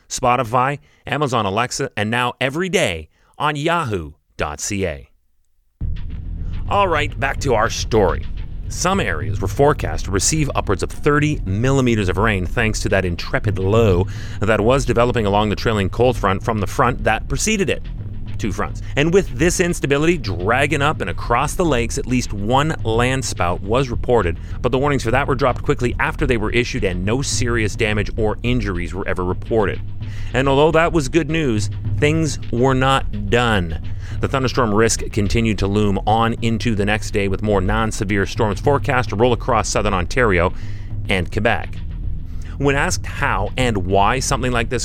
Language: English